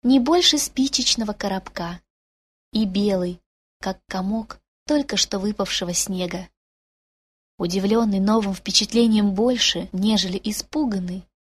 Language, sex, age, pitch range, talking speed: Russian, female, 20-39, 185-250 Hz, 95 wpm